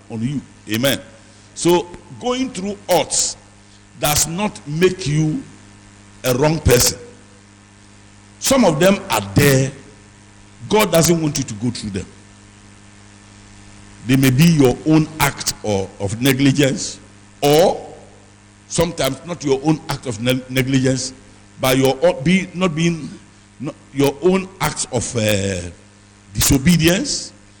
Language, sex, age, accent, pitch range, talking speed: English, male, 50-69, Nigerian, 105-160 Hz, 125 wpm